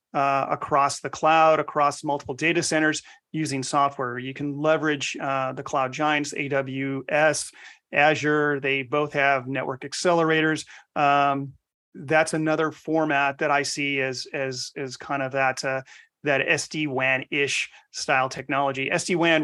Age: 40-59